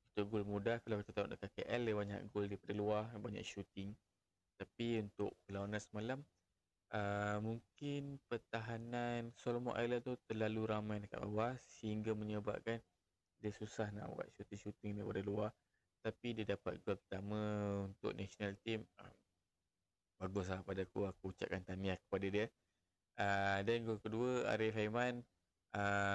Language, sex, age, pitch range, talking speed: Malay, male, 20-39, 95-110 Hz, 140 wpm